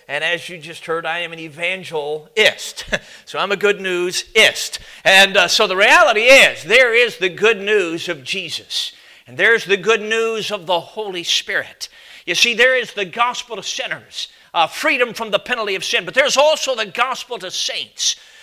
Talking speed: 190 wpm